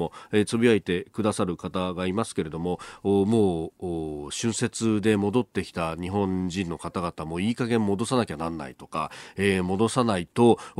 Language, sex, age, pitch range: Japanese, male, 40-59, 100-155 Hz